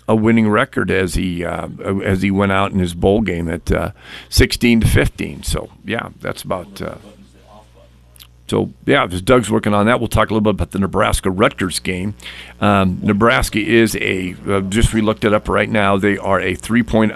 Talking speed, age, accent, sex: 190 wpm, 50-69, American, male